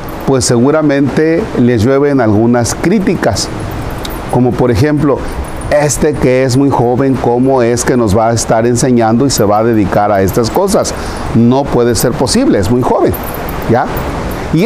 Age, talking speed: 40-59, 160 wpm